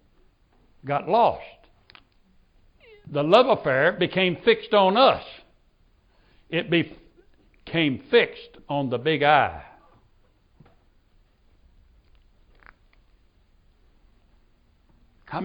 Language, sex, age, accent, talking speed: English, male, 60-79, American, 65 wpm